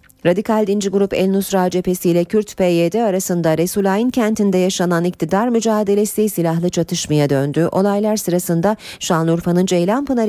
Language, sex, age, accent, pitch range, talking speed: Turkish, female, 40-59, native, 160-205 Hz, 130 wpm